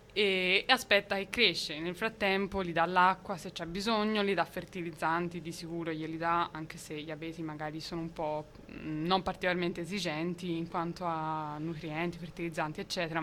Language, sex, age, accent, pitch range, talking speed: Italian, female, 20-39, native, 165-195 Hz, 165 wpm